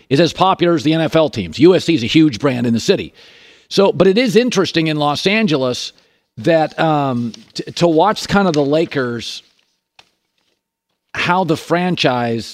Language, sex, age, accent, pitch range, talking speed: English, male, 50-69, American, 135-180 Hz, 165 wpm